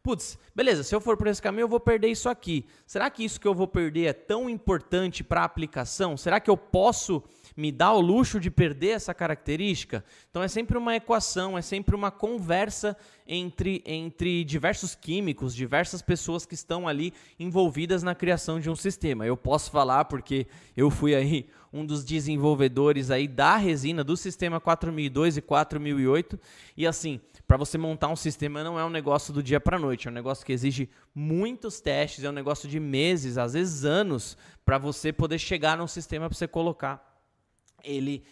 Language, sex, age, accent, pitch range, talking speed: Portuguese, male, 20-39, Brazilian, 145-185 Hz, 190 wpm